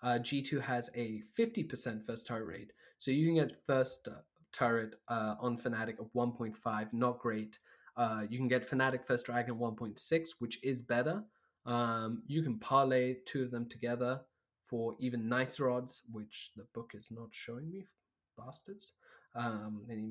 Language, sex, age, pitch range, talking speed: English, male, 20-39, 115-135 Hz, 165 wpm